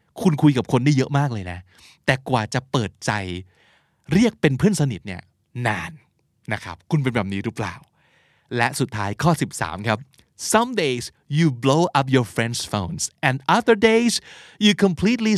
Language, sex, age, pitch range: Thai, male, 20-39, 115-160 Hz